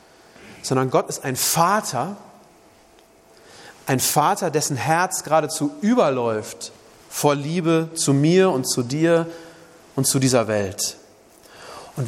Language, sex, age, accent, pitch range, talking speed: German, male, 40-59, German, 140-185 Hz, 115 wpm